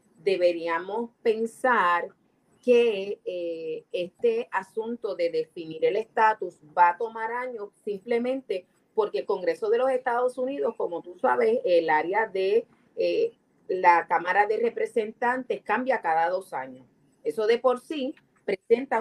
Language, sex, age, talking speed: Spanish, female, 30-49, 135 wpm